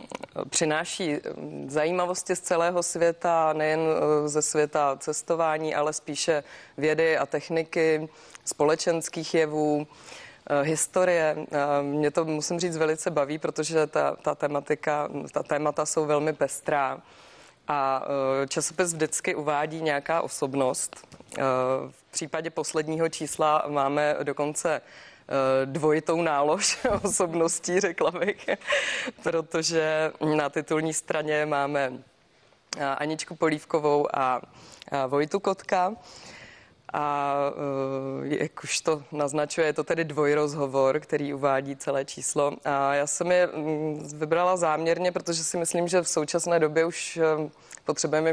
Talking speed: 110 wpm